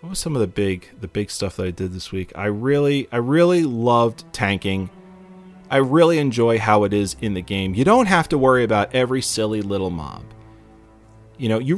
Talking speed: 215 wpm